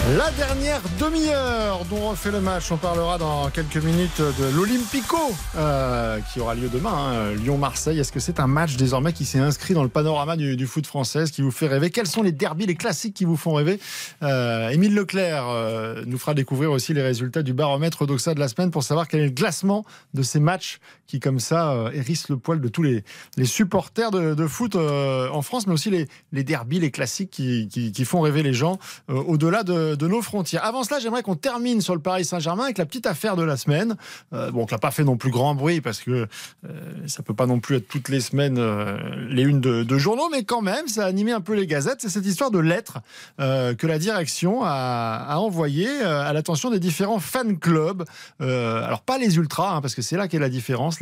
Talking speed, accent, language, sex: 235 wpm, French, French, male